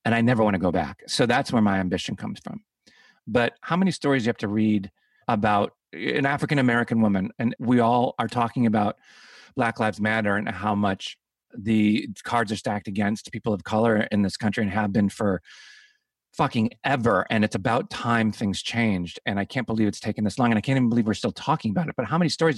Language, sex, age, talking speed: English, male, 40-59, 225 wpm